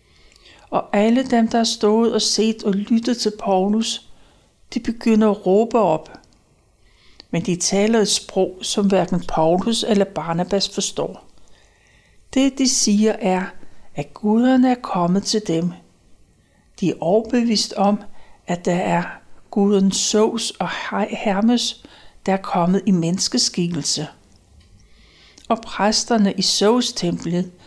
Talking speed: 125 wpm